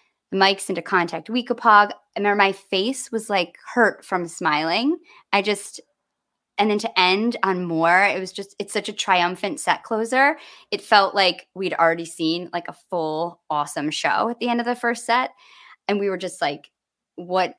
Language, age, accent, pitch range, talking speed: English, 20-39, American, 175-210 Hz, 185 wpm